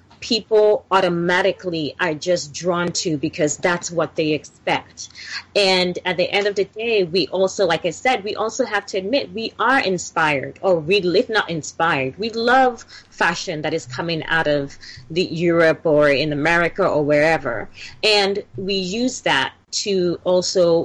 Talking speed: 165 wpm